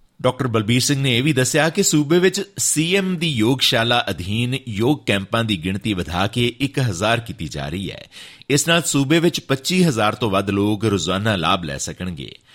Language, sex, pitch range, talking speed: Punjabi, male, 110-140 Hz, 170 wpm